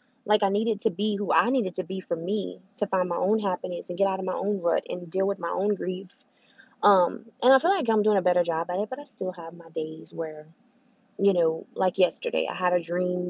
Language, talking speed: English, 255 wpm